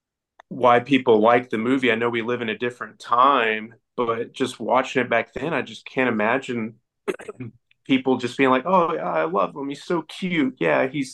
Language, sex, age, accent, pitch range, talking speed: English, male, 30-49, American, 110-135 Hz, 200 wpm